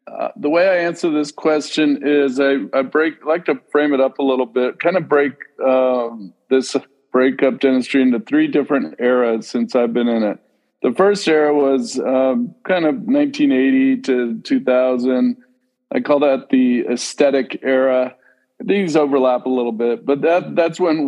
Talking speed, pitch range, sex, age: 170 wpm, 125-155 Hz, male, 50-69